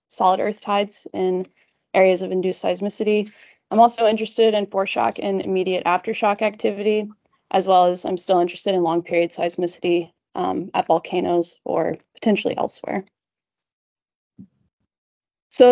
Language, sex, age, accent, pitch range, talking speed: English, female, 20-39, American, 185-225 Hz, 130 wpm